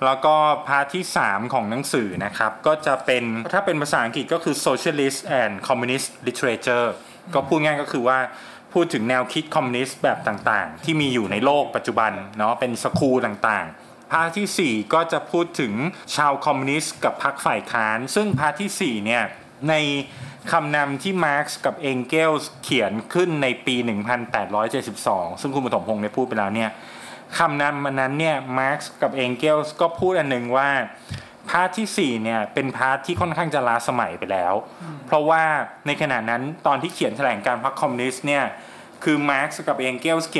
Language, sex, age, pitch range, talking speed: English, male, 20-39, 120-160 Hz, 35 wpm